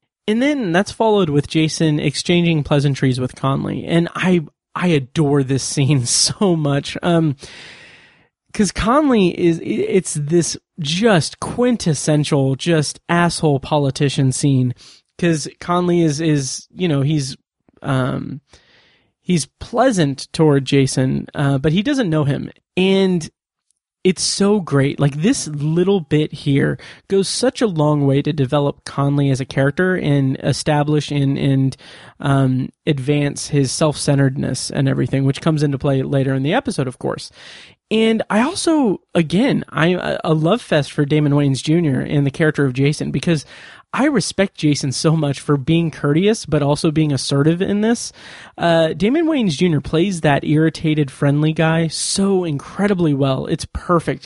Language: English